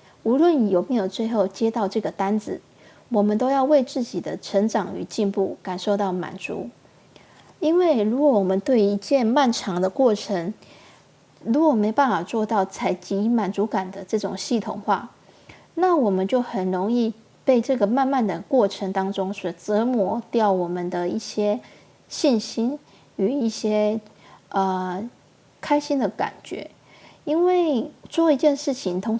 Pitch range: 195-260 Hz